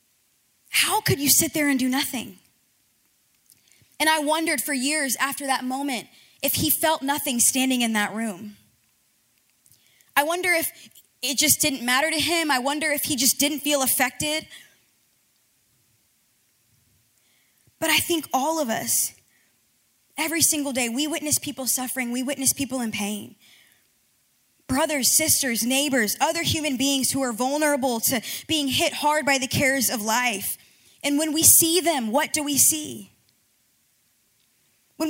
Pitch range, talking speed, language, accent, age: 245-315 Hz, 150 wpm, English, American, 20-39